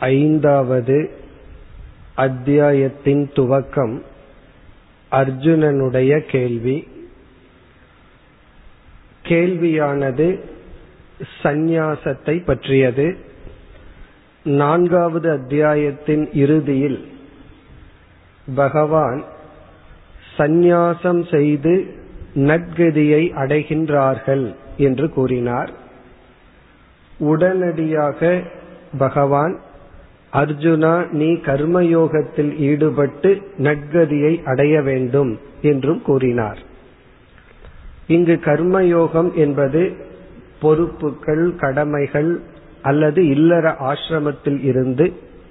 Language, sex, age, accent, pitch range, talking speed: Tamil, male, 40-59, native, 135-165 Hz, 35 wpm